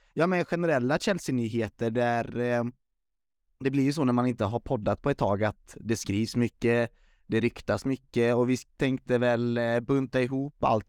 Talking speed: 170 wpm